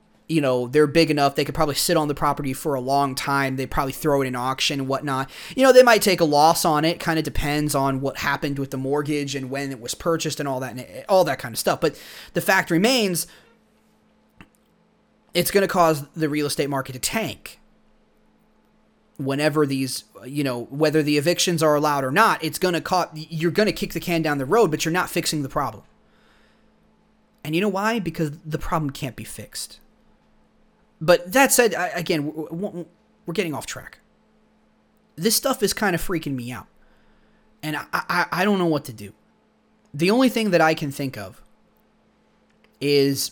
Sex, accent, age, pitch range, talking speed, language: male, American, 30-49, 135-170 Hz, 200 wpm, English